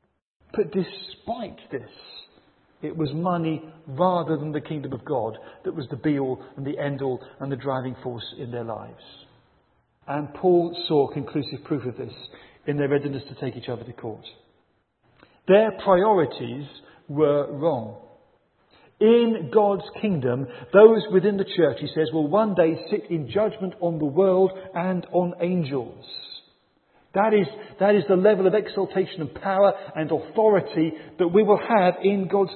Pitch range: 160-235 Hz